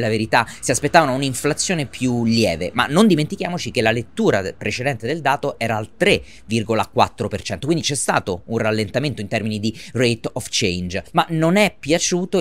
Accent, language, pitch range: native, Italian, 110-145 Hz